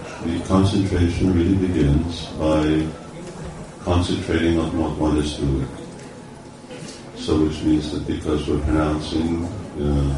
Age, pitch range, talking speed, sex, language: 50-69, 70-85 Hz, 110 wpm, male, Hungarian